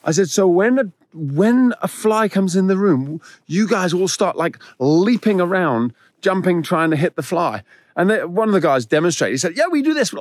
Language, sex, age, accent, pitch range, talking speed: English, male, 40-59, British, 140-195 Hz, 230 wpm